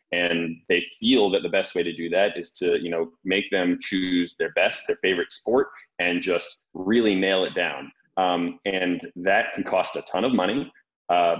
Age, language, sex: 30-49, English, male